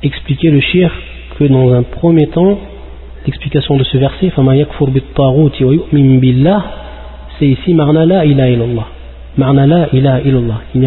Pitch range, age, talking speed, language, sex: 120-155 Hz, 40-59, 110 wpm, French, male